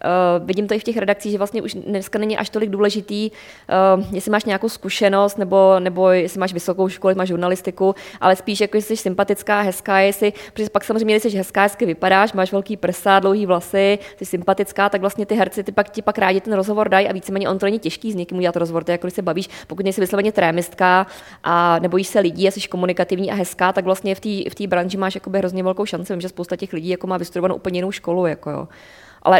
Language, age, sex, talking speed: Czech, 20-39, female, 230 wpm